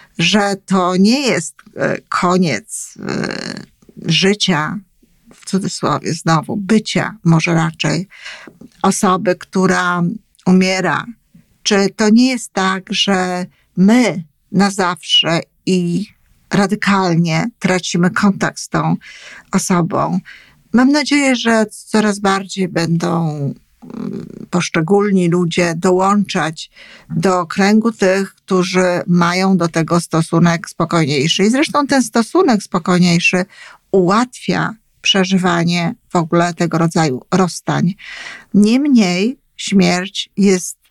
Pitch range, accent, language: 175-205 Hz, native, Polish